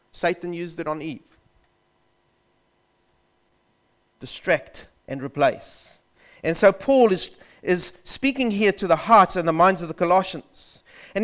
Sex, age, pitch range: male, 40-59, 175-255 Hz